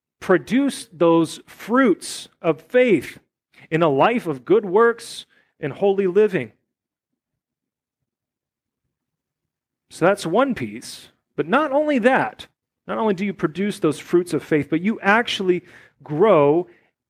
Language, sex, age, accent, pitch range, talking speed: English, male, 40-59, American, 155-210 Hz, 125 wpm